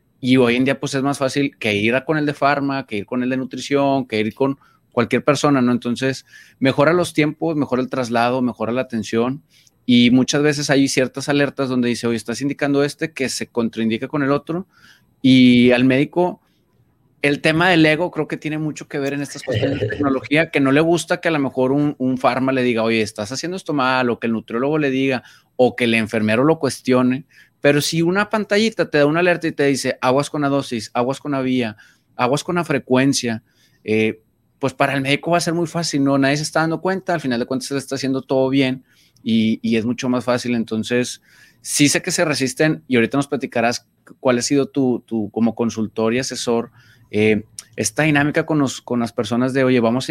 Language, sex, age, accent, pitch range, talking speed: Spanish, male, 30-49, Mexican, 120-145 Hz, 225 wpm